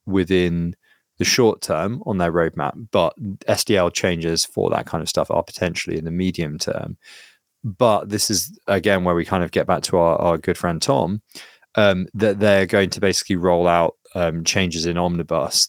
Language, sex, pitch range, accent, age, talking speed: English, male, 85-100 Hz, British, 20-39, 185 wpm